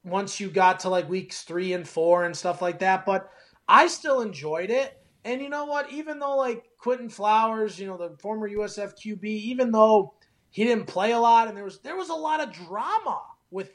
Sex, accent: male, American